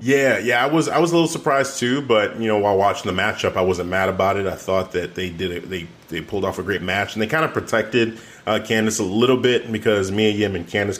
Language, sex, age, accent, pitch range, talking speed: English, male, 30-49, American, 95-115 Hz, 275 wpm